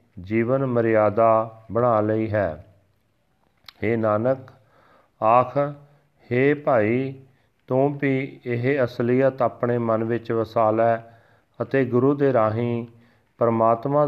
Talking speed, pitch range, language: 95 wpm, 110-130 Hz, Punjabi